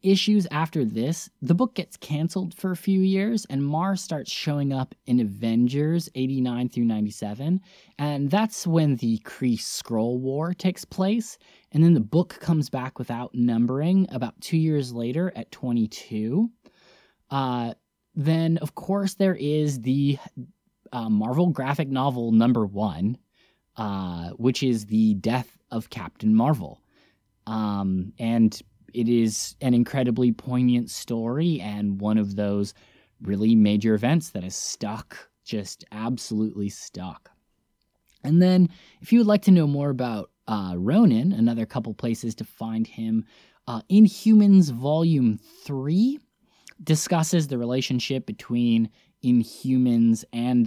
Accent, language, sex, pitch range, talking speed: American, English, male, 115-165 Hz, 135 wpm